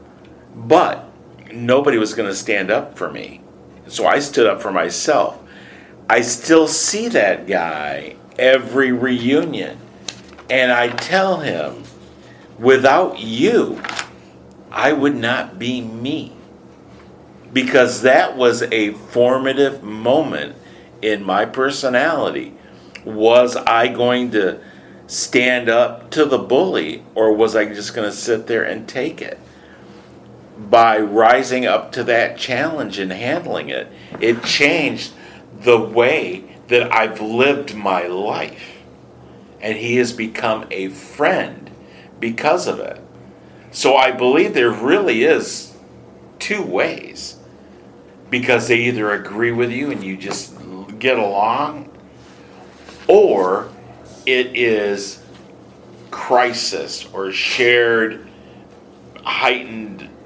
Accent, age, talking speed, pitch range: American, 50-69, 115 wpm, 100-125 Hz